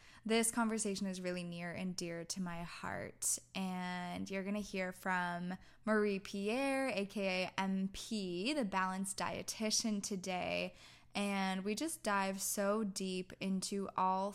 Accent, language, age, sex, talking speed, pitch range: American, English, 10-29, female, 135 wpm, 185-220 Hz